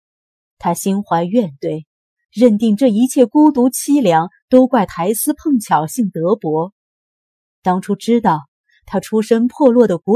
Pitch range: 165-235 Hz